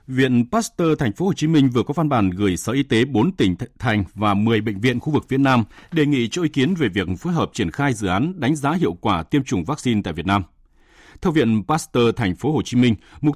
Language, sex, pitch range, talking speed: Vietnamese, male, 100-145 Hz, 260 wpm